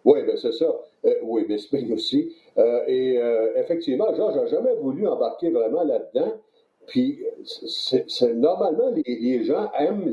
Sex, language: male, French